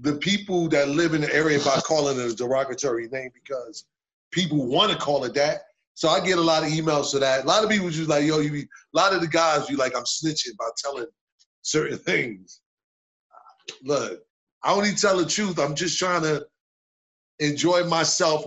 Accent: American